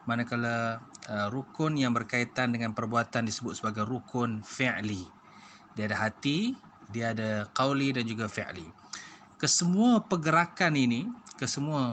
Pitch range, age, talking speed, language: 110-140 Hz, 20-39, 120 wpm, Malay